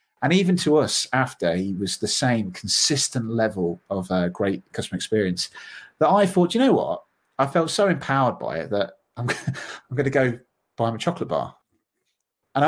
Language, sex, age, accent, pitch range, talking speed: English, male, 30-49, British, 110-170 Hz, 190 wpm